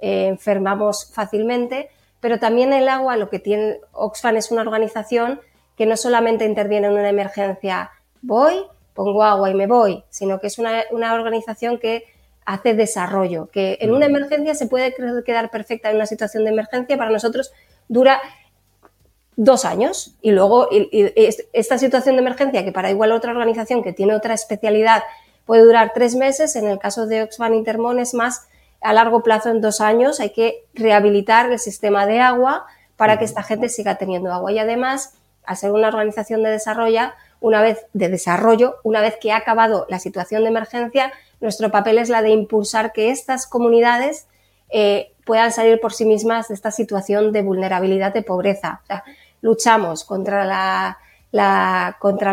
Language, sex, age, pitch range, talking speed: Spanish, female, 30-49, 205-235 Hz, 175 wpm